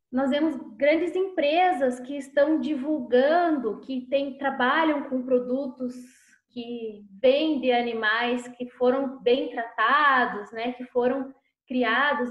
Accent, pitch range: Brazilian, 250-320 Hz